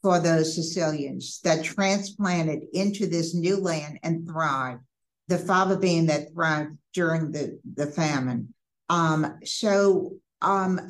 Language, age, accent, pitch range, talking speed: English, 60-79, American, 155-185 Hz, 125 wpm